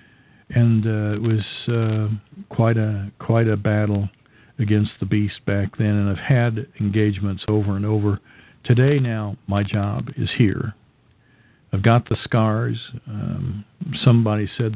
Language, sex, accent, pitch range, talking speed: English, male, American, 105-125 Hz, 140 wpm